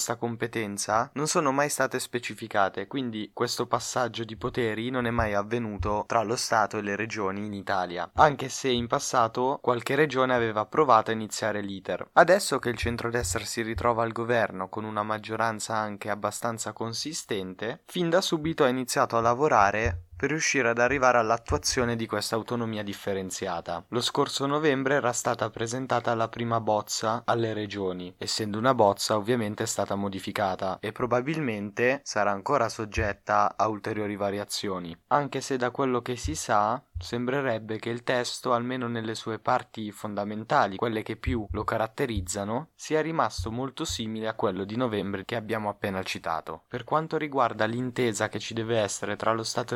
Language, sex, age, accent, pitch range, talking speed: Italian, male, 20-39, native, 105-125 Hz, 160 wpm